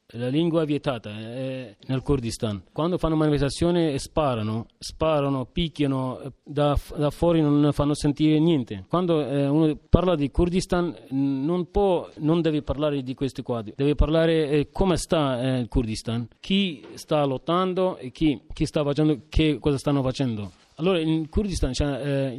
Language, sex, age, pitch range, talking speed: Italian, male, 30-49, 130-160 Hz, 165 wpm